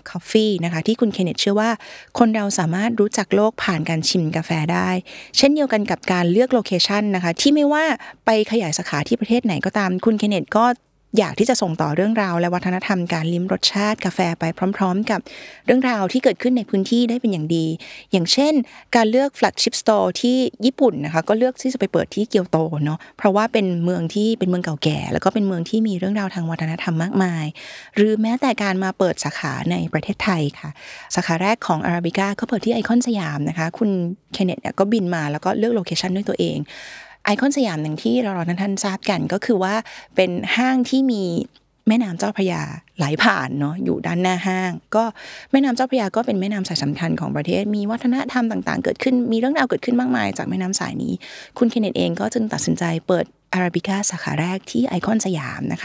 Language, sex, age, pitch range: Thai, female, 20-39, 175-230 Hz